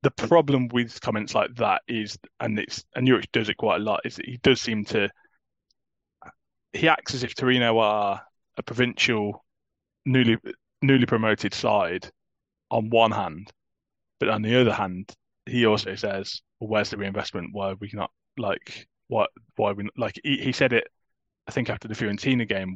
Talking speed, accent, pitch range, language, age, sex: 185 wpm, British, 100-125 Hz, English, 20-39, male